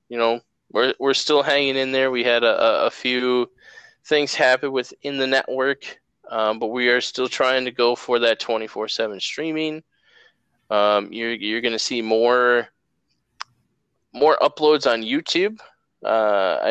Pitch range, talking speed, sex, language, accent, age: 105-130 Hz, 150 wpm, male, English, American, 20-39